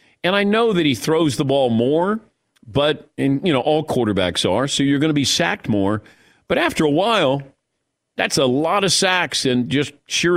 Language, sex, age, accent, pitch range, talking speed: English, male, 50-69, American, 120-165 Hz, 205 wpm